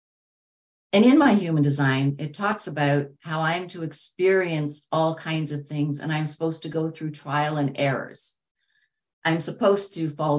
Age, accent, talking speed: 50-69, American, 170 wpm